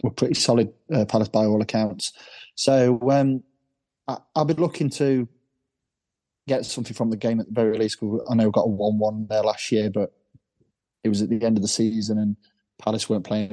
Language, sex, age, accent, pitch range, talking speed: English, male, 20-39, British, 105-125 Hz, 205 wpm